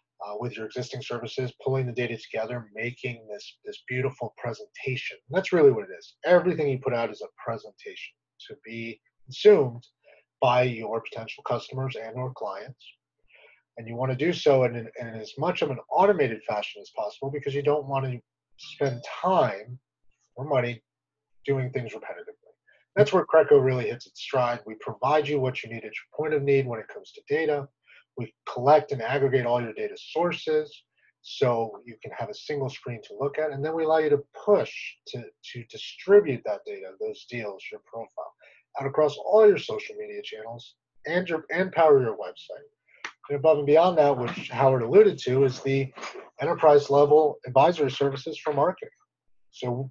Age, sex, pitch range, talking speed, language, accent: 30-49, male, 125-195 Hz, 185 wpm, English, American